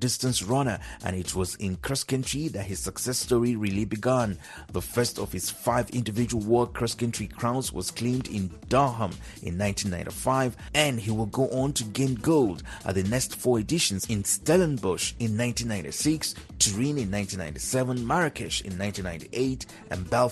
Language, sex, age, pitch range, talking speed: English, male, 30-49, 100-130 Hz, 155 wpm